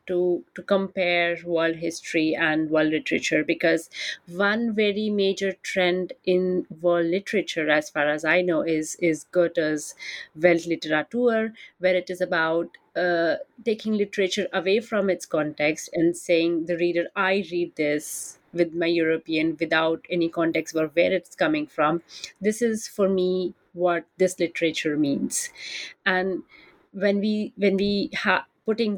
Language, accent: English, Indian